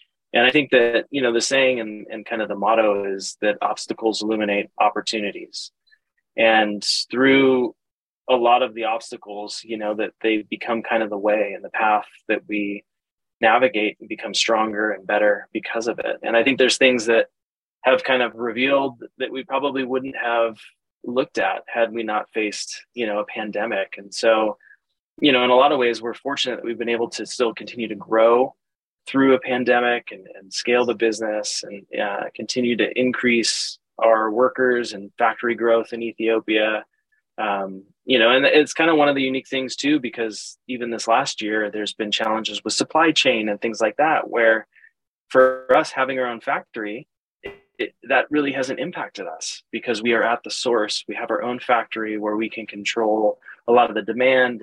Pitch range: 110-130 Hz